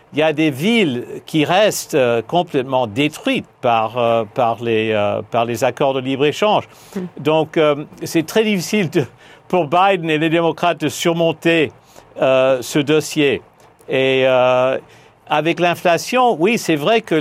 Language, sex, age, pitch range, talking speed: French, male, 50-69, 130-170 Hz, 155 wpm